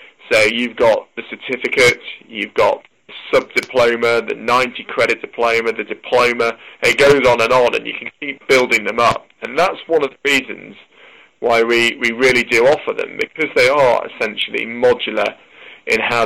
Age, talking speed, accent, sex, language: 20-39, 170 wpm, British, male, English